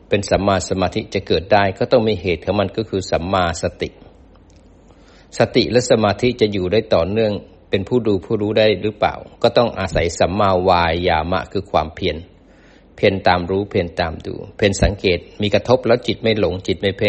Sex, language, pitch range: male, Thai, 90-105 Hz